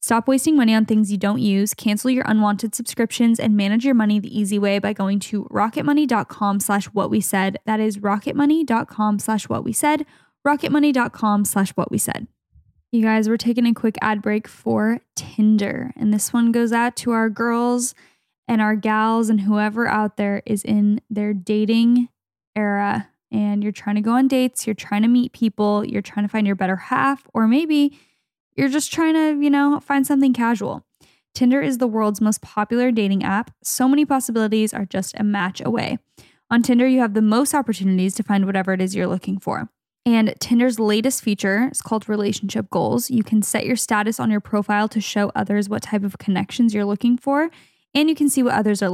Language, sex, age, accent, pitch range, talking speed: English, female, 10-29, American, 205-240 Hz, 200 wpm